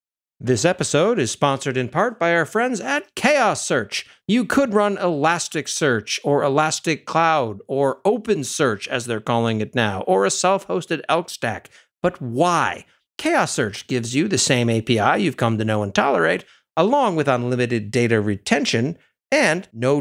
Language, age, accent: English, 50-69, American